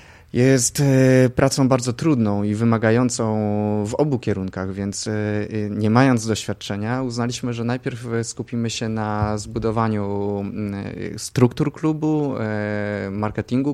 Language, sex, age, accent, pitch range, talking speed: Polish, male, 20-39, native, 105-125 Hz, 100 wpm